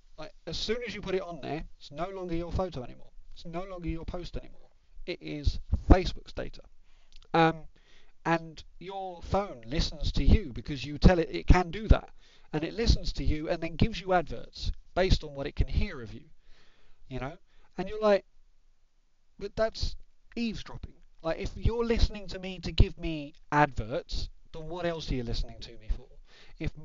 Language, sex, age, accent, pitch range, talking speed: English, male, 40-59, British, 125-175 Hz, 190 wpm